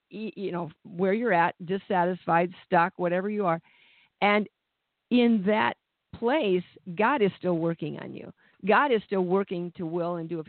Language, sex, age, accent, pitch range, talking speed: English, female, 50-69, American, 170-215 Hz, 165 wpm